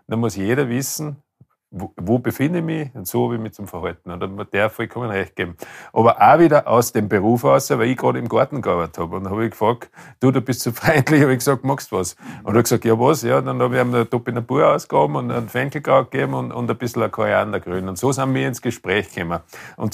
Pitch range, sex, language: 110-135 Hz, male, German